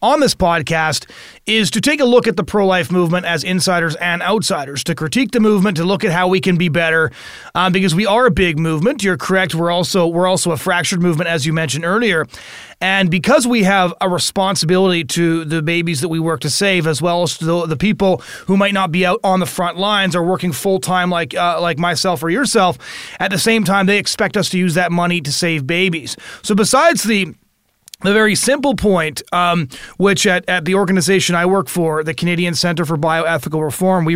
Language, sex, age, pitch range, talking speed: English, male, 30-49, 170-200 Hz, 220 wpm